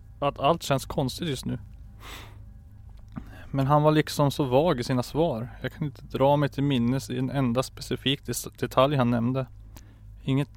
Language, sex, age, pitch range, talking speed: Swedish, male, 30-49, 105-130 Hz, 170 wpm